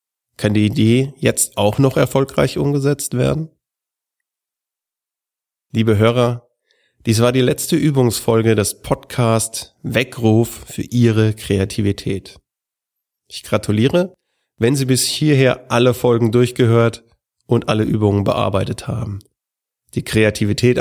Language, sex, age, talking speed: German, male, 30-49, 110 wpm